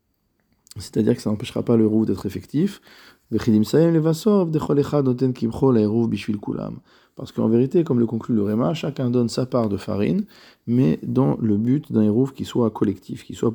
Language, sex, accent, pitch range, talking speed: French, male, French, 105-125 Hz, 145 wpm